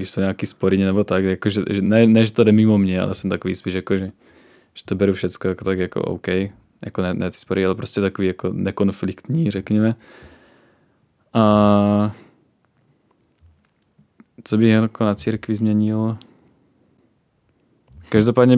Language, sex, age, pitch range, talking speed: Czech, male, 20-39, 95-110 Hz, 155 wpm